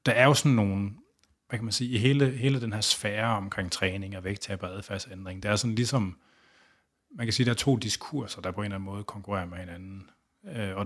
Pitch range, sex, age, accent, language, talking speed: 95-110 Hz, male, 30-49, native, Danish, 225 wpm